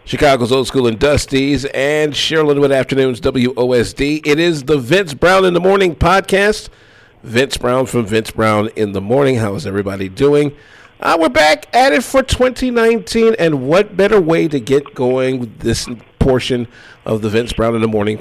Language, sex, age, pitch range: English, male, 50-69, 120-180 Hz